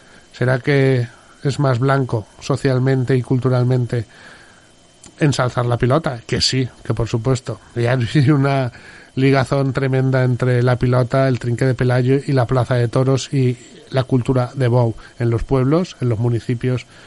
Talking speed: 155 wpm